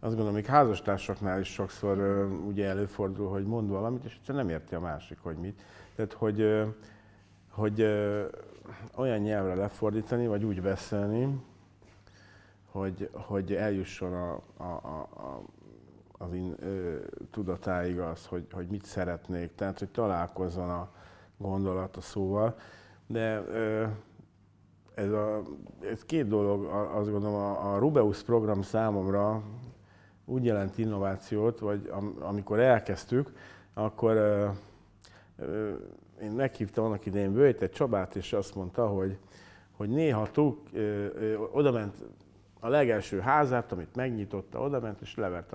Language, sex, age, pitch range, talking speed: Hungarian, male, 50-69, 95-110 Hz, 135 wpm